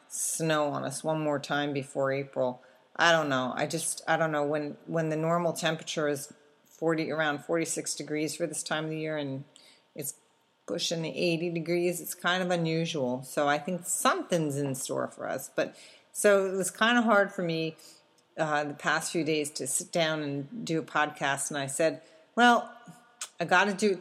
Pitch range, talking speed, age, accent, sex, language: 145-170 Hz, 195 wpm, 40-59, American, female, English